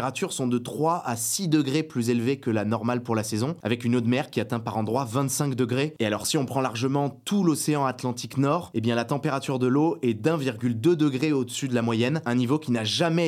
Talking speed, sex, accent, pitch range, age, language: 250 wpm, male, French, 120-150 Hz, 20-39, French